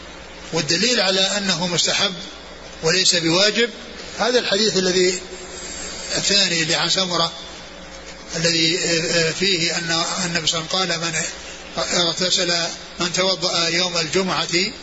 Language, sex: Arabic, male